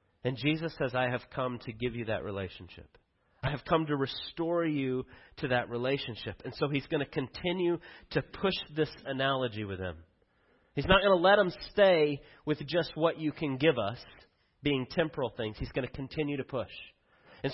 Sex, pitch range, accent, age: male, 125-165 Hz, American, 30-49